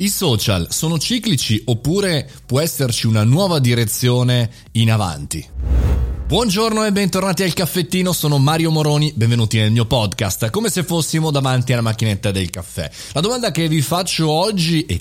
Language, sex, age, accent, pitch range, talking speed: Italian, male, 30-49, native, 105-150 Hz, 155 wpm